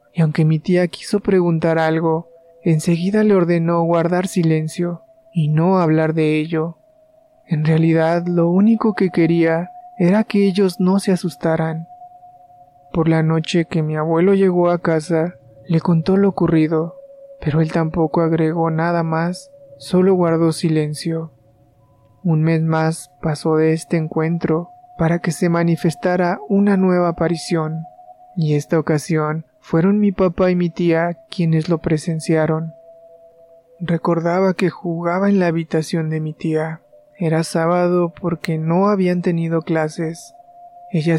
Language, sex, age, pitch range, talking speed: Spanish, male, 20-39, 160-180 Hz, 135 wpm